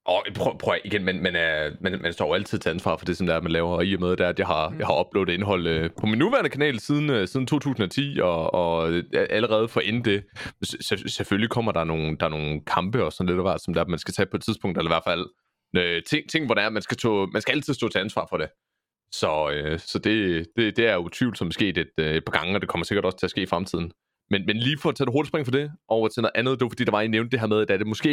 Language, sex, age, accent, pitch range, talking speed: Danish, male, 30-49, native, 95-135 Hz, 295 wpm